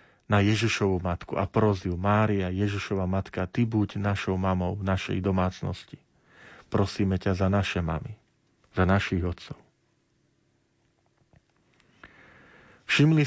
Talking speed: 110 wpm